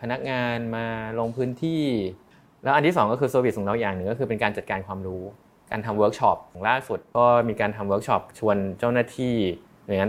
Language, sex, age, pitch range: Thai, male, 20-39, 100-120 Hz